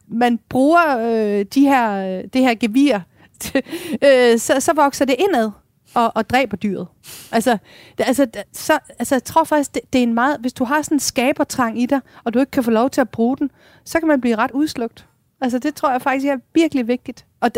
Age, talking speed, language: 40-59, 225 wpm, Danish